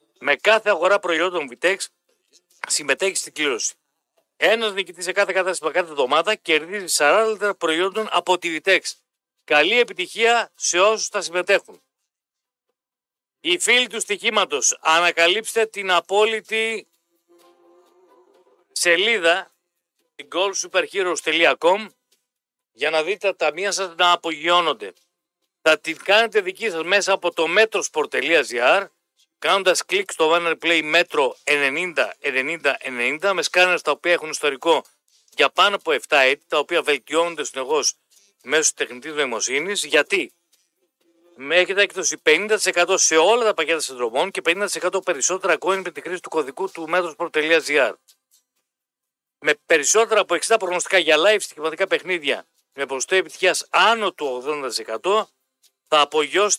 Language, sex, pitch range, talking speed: Greek, male, 165-215 Hz, 125 wpm